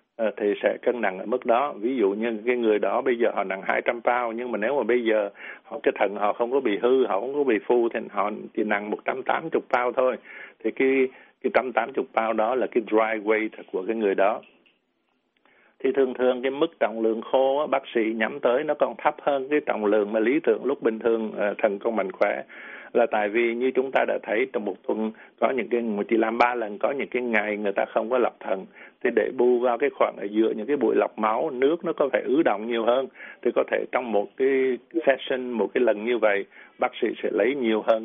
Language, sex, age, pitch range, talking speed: Vietnamese, male, 60-79, 110-135 Hz, 255 wpm